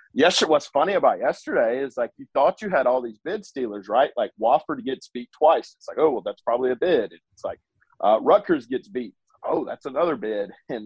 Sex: male